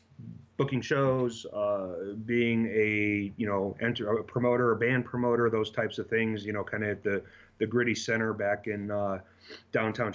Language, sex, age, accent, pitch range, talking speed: English, male, 30-49, American, 105-115 Hz, 170 wpm